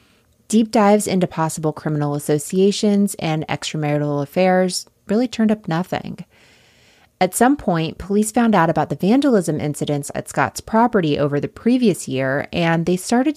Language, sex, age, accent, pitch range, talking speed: English, female, 20-39, American, 150-205 Hz, 150 wpm